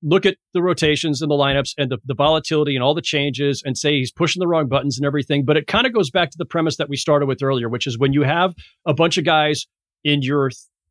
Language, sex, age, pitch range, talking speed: English, male, 40-59, 130-170 Hz, 270 wpm